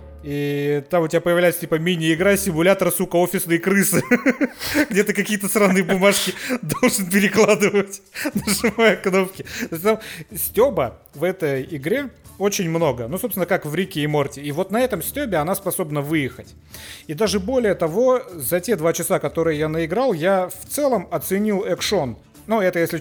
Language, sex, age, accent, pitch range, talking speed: Russian, male, 30-49, native, 150-200 Hz, 155 wpm